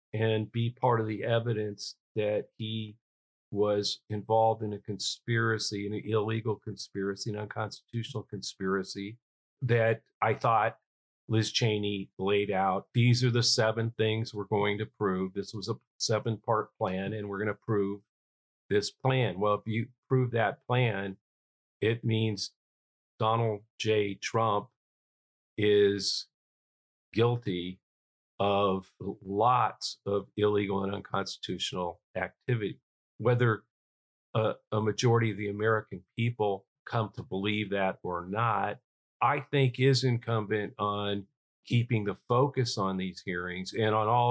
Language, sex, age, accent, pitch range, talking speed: English, male, 50-69, American, 100-115 Hz, 130 wpm